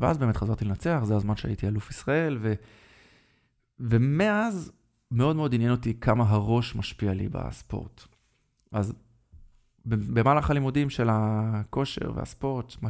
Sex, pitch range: male, 105-120 Hz